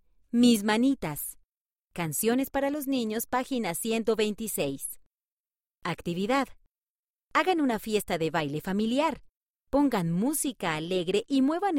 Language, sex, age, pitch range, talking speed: Spanish, female, 30-49, 175-245 Hz, 100 wpm